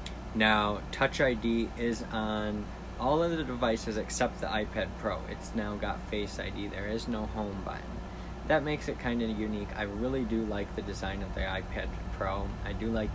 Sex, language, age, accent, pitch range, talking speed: male, English, 20-39, American, 95-110 Hz, 190 wpm